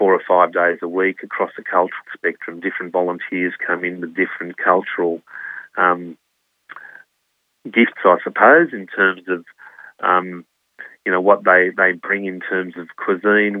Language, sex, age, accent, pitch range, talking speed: English, male, 30-49, Australian, 85-95 Hz, 155 wpm